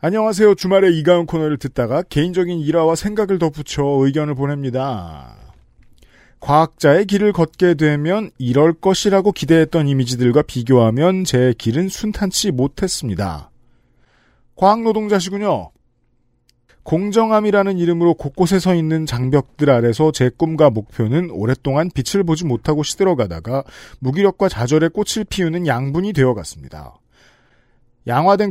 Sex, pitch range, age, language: male, 125-180 Hz, 40-59, Korean